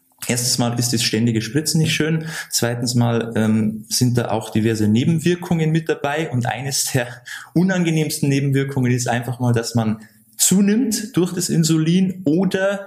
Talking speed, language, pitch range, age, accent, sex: 155 wpm, German, 115-150 Hz, 20-39, German, male